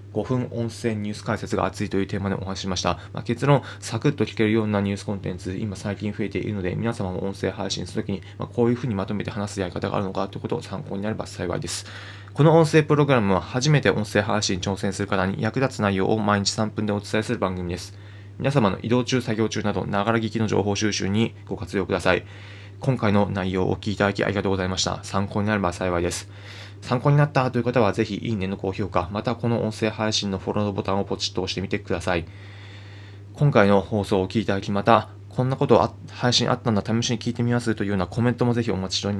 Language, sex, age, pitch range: Japanese, male, 20-39, 95-115 Hz